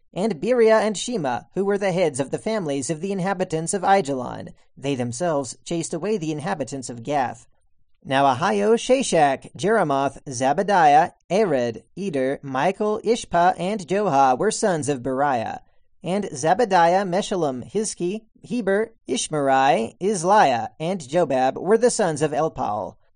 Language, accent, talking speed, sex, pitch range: English, American, 135 wpm, male, 140-210 Hz